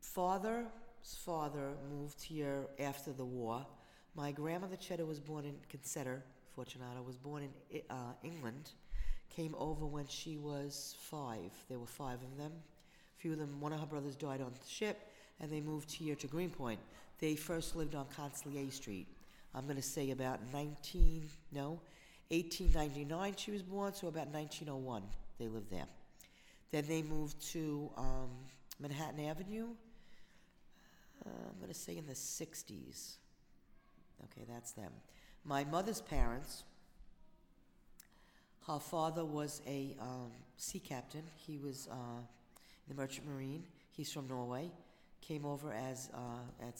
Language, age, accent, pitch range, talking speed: English, 50-69, American, 130-160 Hz, 145 wpm